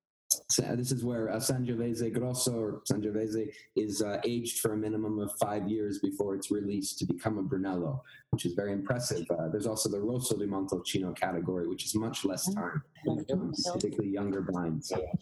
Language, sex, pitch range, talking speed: English, male, 105-140 Hz, 175 wpm